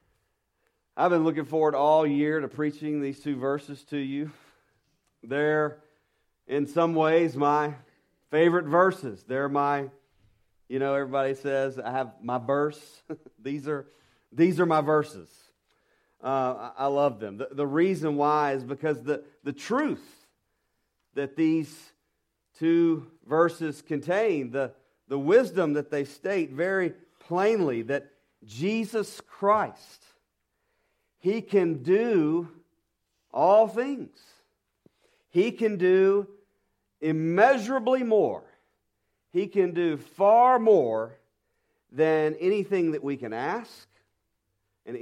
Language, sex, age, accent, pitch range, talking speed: English, male, 40-59, American, 135-175 Hz, 115 wpm